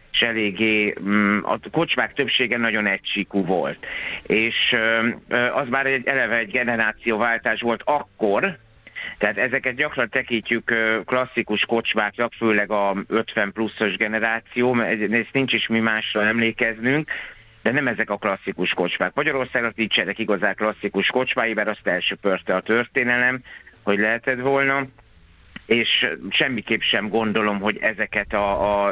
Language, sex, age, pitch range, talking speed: Hungarian, male, 50-69, 105-120 Hz, 130 wpm